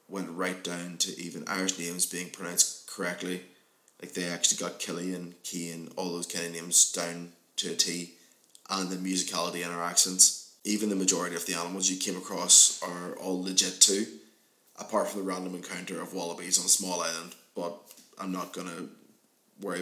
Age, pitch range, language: 20-39, 85-95 Hz, English